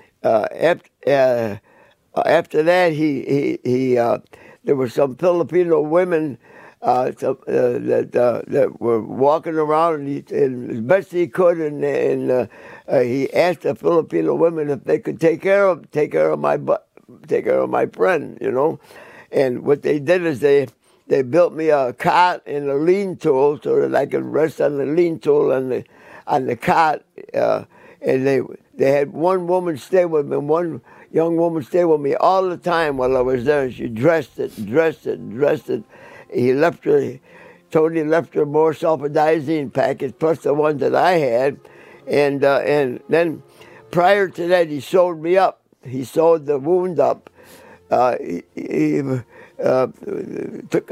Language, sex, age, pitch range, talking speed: English, male, 60-79, 145-185 Hz, 180 wpm